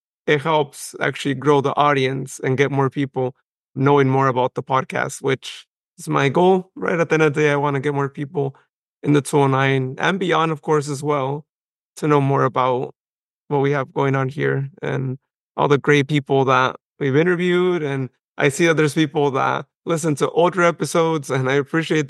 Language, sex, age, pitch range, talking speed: English, male, 30-49, 140-160 Hz, 200 wpm